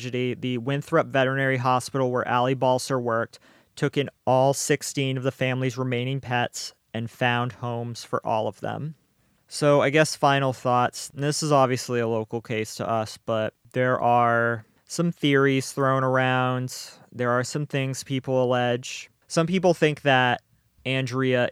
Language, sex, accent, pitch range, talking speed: English, male, American, 120-140 Hz, 155 wpm